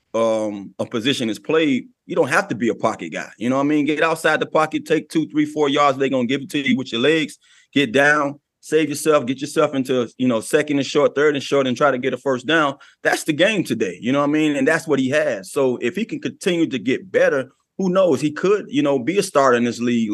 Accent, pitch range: American, 125-155 Hz